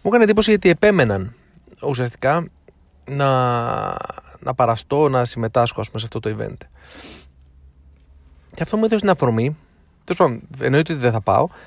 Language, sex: Greek, male